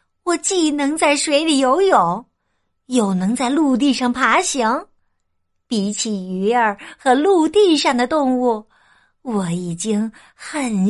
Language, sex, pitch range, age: Chinese, female, 160-260 Hz, 50-69